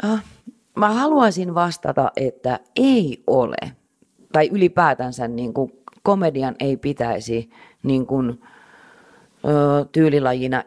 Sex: female